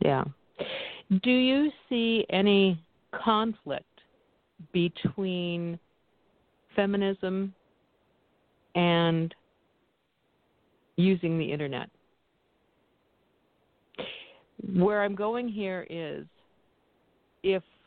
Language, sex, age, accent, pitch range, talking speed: English, female, 50-69, American, 165-195 Hz, 60 wpm